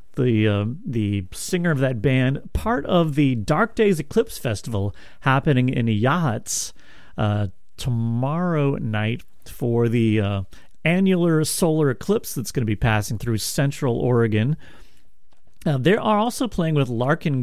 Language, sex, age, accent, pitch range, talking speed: English, male, 40-59, American, 120-175 Hz, 140 wpm